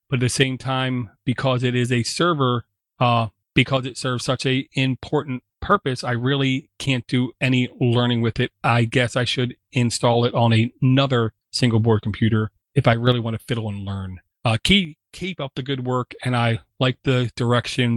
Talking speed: 195 wpm